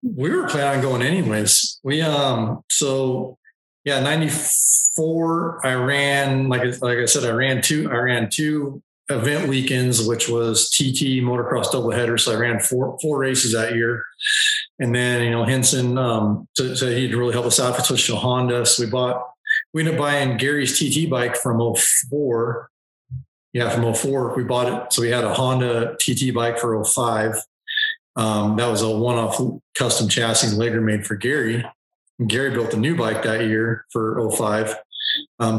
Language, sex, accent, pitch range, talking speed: English, male, American, 115-135 Hz, 185 wpm